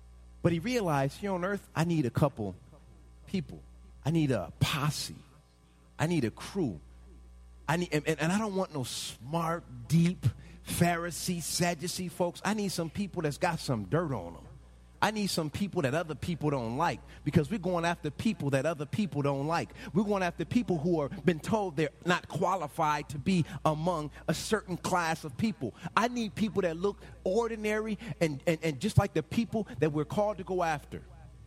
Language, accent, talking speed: English, American, 185 wpm